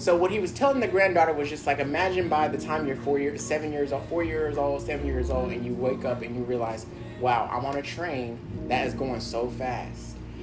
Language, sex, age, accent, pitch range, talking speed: English, male, 20-39, American, 110-140 Hz, 245 wpm